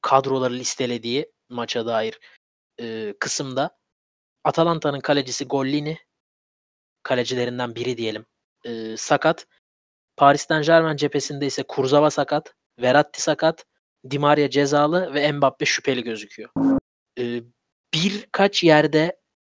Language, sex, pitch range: Turkish, male, 120-155 Hz